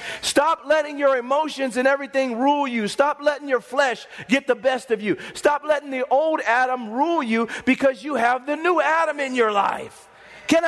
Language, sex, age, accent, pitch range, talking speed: English, male, 40-59, American, 225-280 Hz, 190 wpm